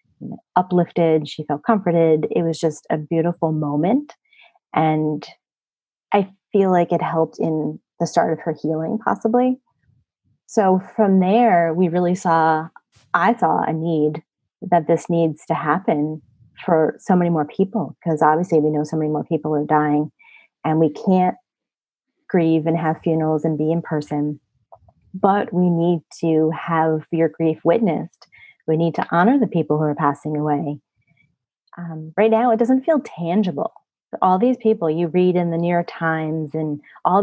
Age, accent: 30-49, American